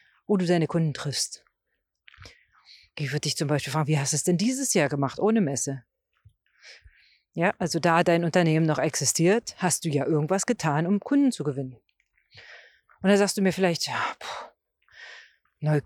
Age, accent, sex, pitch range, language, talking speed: 40-59, German, female, 150-230 Hz, German, 175 wpm